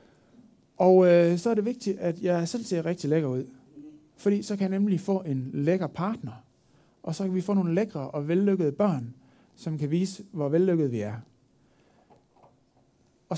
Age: 60-79